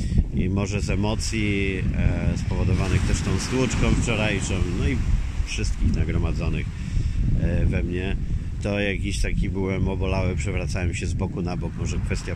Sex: male